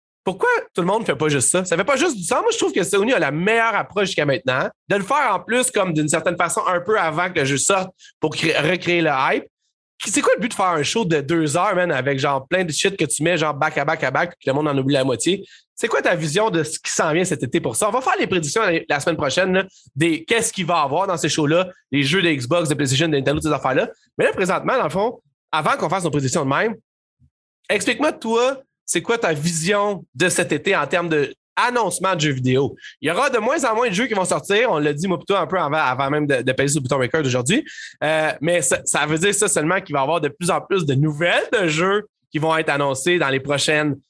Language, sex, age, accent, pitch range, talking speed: French, male, 30-49, Canadian, 145-195 Hz, 280 wpm